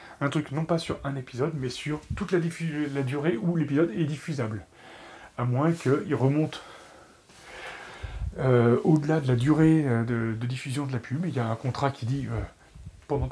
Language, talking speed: French, 190 wpm